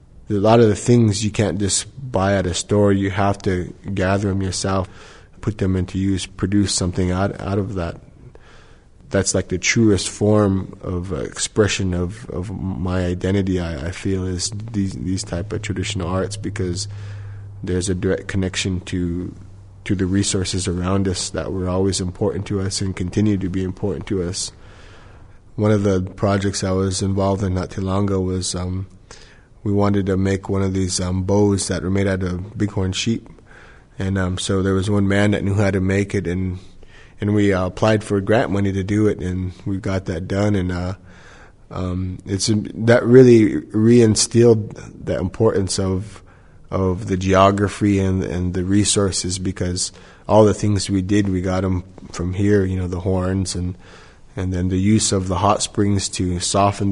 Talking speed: 185 wpm